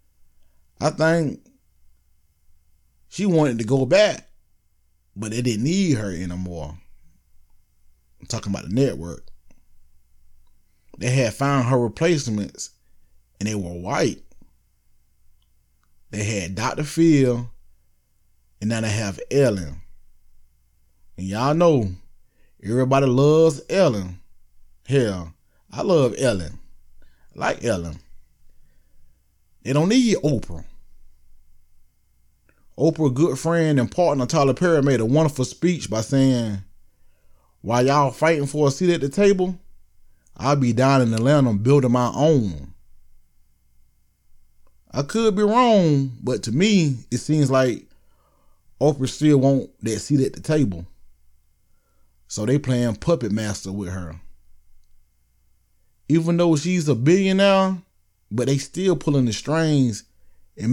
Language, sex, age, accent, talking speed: English, male, 20-39, American, 120 wpm